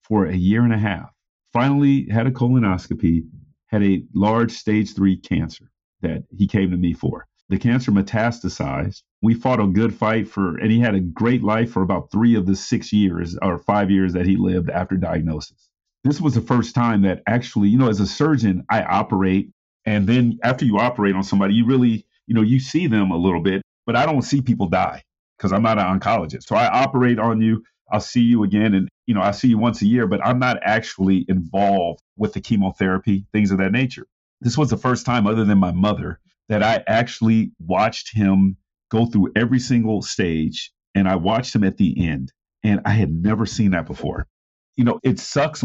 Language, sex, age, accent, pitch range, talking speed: English, male, 40-59, American, 95-115 Hz, 210 wpm